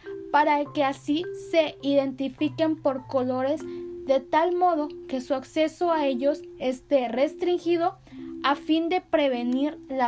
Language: Spanish